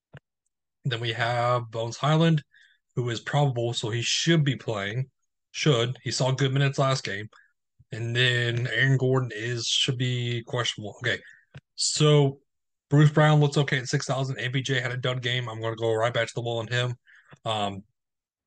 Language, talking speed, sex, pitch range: English, 170 wpm, male, 120-140 Hz